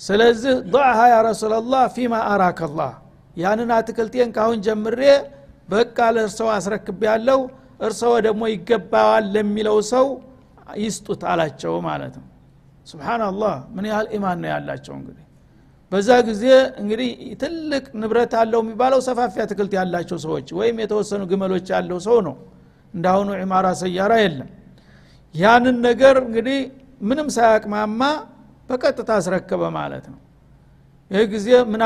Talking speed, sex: 90 wpm, male